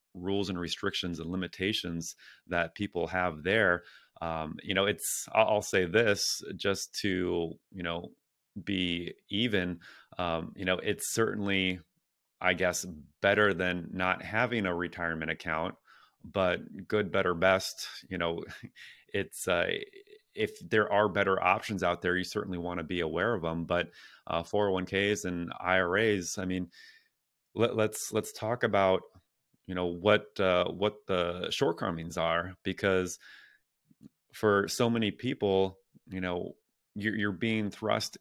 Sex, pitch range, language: male, 90-105 Hz, English